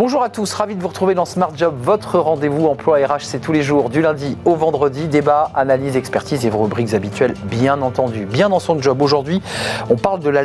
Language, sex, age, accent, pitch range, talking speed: French, male, 40-59, French, 120-155 Hz, 230 wpm